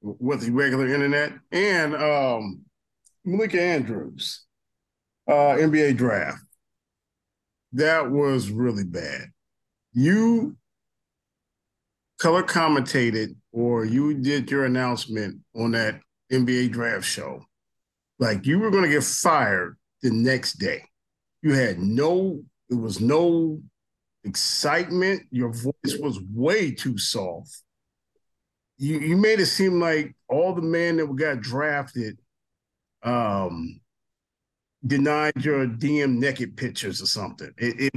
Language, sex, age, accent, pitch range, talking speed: English, male, 50-69, American, 120-165 Hz, 115 wpm